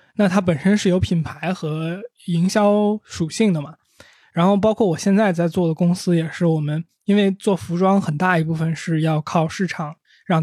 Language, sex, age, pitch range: Chinese, male, 20-39, 170-210 Hz